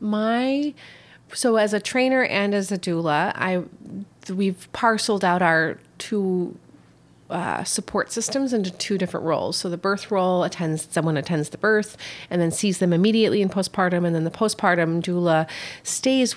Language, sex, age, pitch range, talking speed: English, female, 30-49, 170-210 Hz, 165 wpm